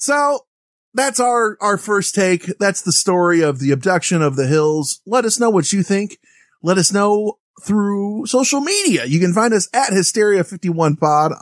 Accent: American